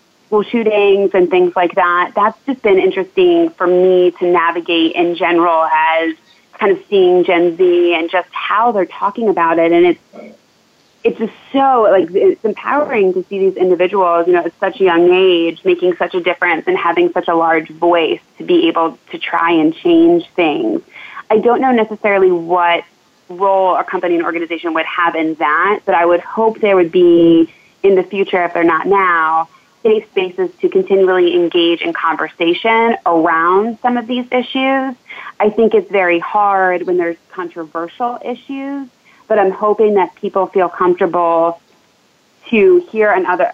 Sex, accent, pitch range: female, American, 170-220 Hz